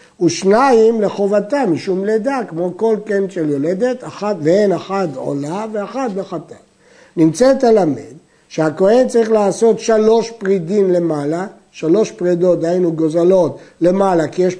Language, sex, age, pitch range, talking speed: Hebrew, male, 60-79, 170-225 Hz, 125 wpm